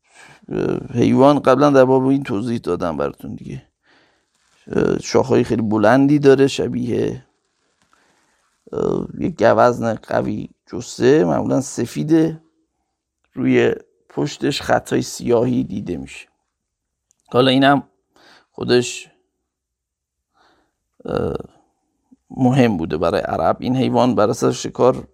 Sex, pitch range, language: male, 120-165 Hz, Persian